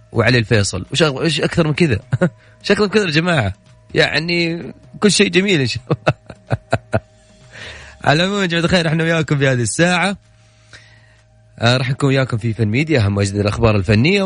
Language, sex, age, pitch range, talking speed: Arabic, male, 30-49, 105-150 Hz, 150 wpm